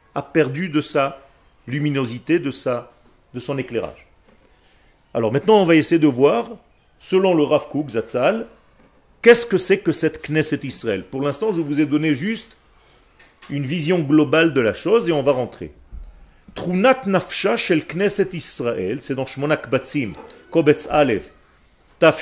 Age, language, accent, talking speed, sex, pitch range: 40-59, French, French, 155 wpm, male, 130-170 Hz